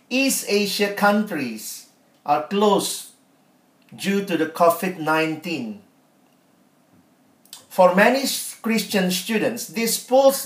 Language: Indonesian